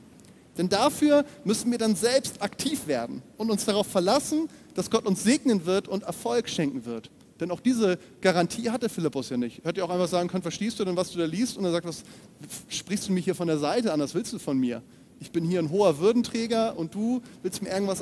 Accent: German